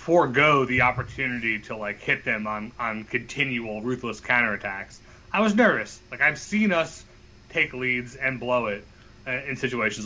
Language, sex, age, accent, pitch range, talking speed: English, male, 30-49, American, 115-150 Hz, 160 wpm